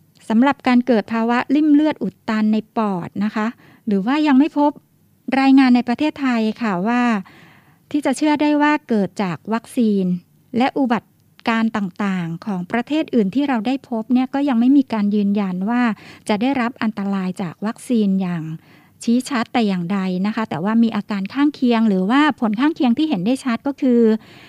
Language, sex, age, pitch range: Thai, female, 60-79, 200-255 Hz